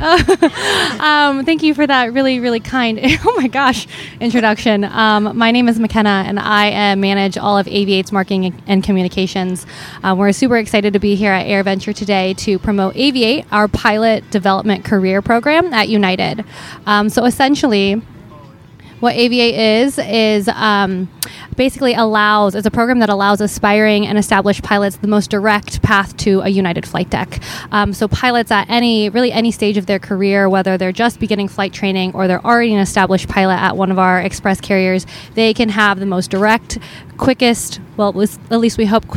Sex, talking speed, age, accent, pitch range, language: female, 180 wpm, 20-39, American, 190-225 Hz, English